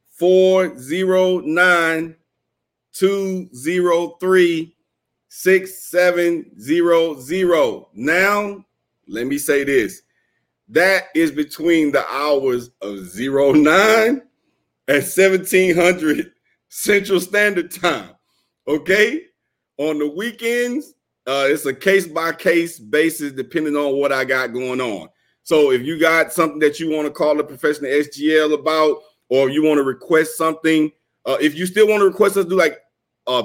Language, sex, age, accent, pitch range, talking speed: English, male, 50-69, American, 130-185 Hz, 135 wpm